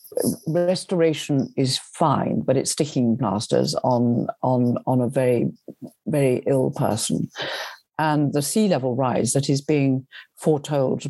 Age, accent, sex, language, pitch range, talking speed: 60-79, British, female, English, 130-155 Hz, 130 wpm